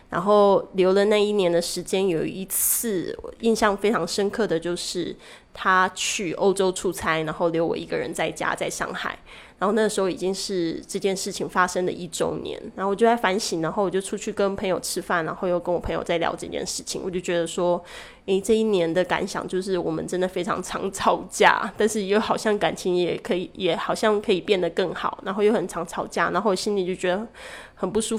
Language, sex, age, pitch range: Chinese, female, 20-39, 180-215 Hz